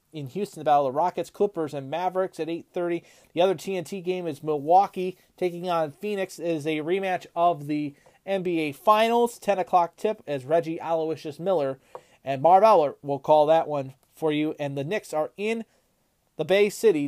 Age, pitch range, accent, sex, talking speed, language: 30-49, 155-195 Hz, American, male, 185 wpm, English